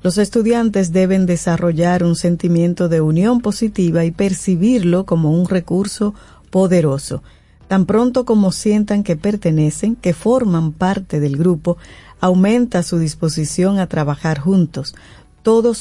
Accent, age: American, 50-69